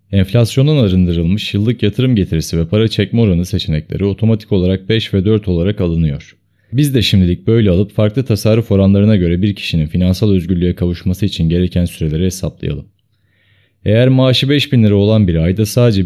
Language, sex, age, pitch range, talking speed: Turkish, male, 30-49, 90-115 Hz, 160 wpm